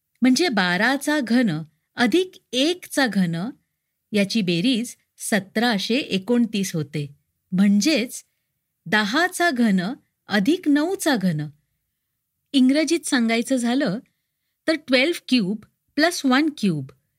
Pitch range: 205-280 Hz